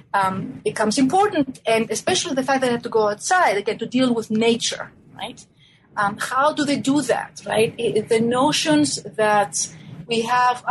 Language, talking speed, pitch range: English, 180 wpm, 205-255 Hz